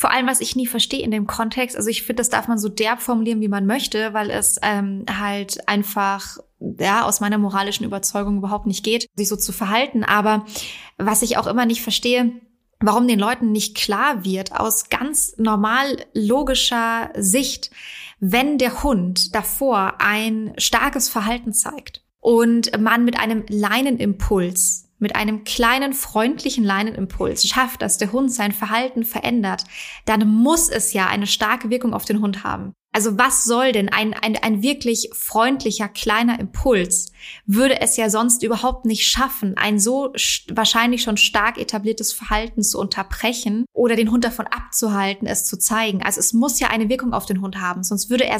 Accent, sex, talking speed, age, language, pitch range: German, female, 175 wpm, 20-39, German, 210-240 Hz